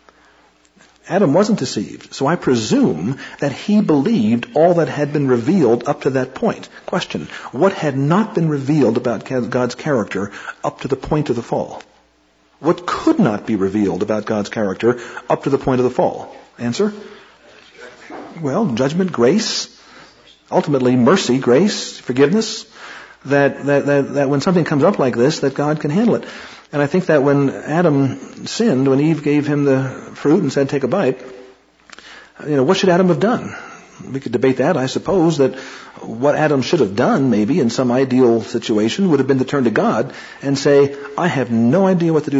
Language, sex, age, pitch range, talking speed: English, male, 50-69, 125-160 Hz, 180 wpm